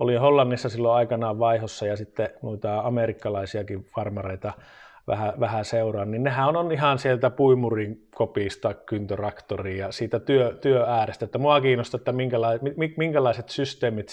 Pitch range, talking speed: 105-130 Hz, 130 wpm